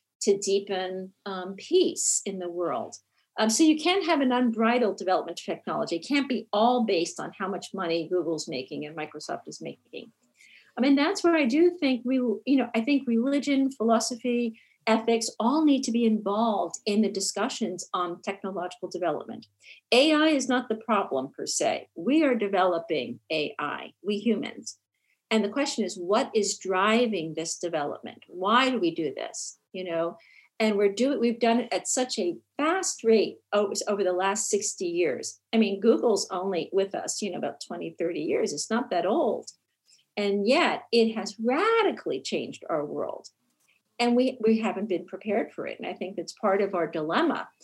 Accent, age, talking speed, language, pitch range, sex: American, 50-69, 180 wpm, English, 190-250 Hz, female